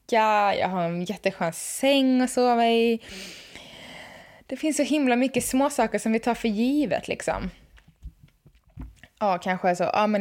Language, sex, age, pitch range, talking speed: Swedish, female, 20-39, 190-235 Hz, 155 wpm